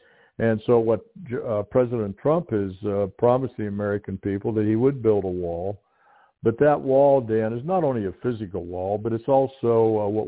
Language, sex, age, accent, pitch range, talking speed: English, male, 60-79, American, 100-115 Hz, 195 wpm